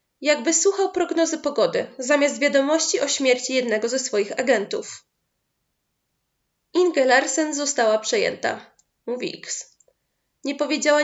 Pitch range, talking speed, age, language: 255-330 Hz, 110 wpm, 20-39, Polish